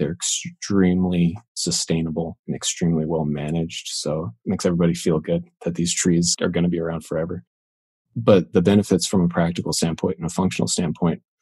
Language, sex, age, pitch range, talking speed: English, male, 30-49, 80-95 Hz, 175 wpm